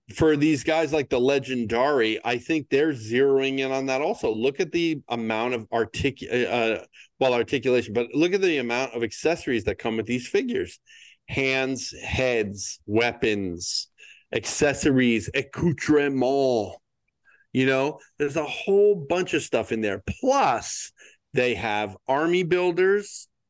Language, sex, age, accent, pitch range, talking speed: English, male, 40-59, American, 120-140 Hz, 140 wpm